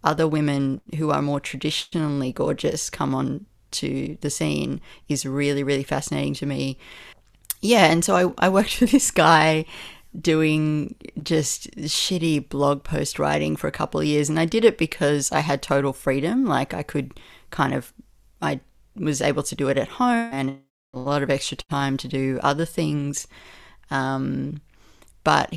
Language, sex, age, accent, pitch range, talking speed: English, female, 30-49, Australian, 135-160 Hz, 170 wpm